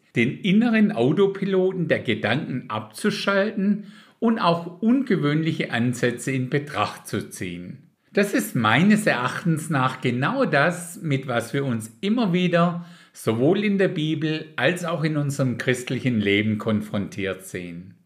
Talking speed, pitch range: 130 wpm, 115-175 Hz